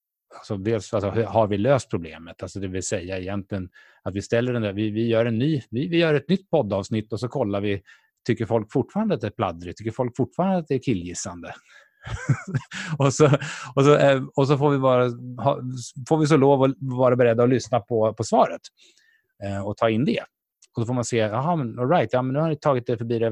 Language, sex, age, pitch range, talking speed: Swedish, male, 30-49, 105-140 Hz, 220 wpm